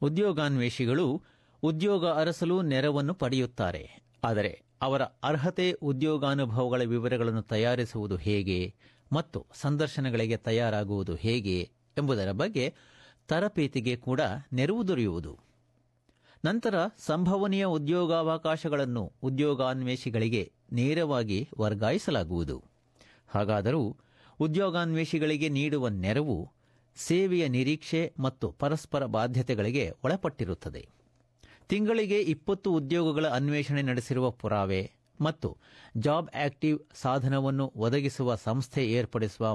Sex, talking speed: male, 75 wpm